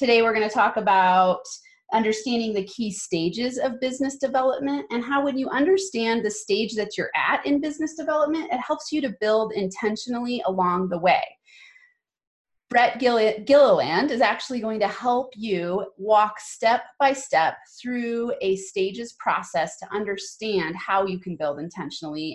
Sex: female